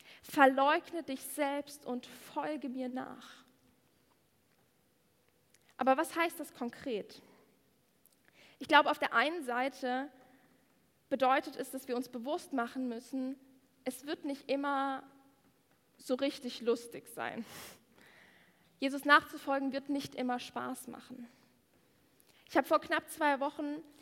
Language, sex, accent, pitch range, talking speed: German, female, German, 250-290 Hz, 115 wpm